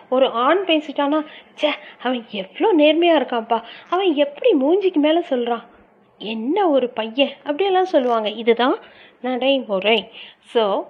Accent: native